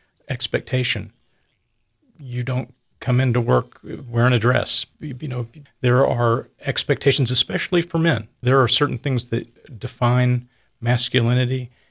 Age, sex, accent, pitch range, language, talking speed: 40-59, male, American, 110-130 Hz, English, 120 wpm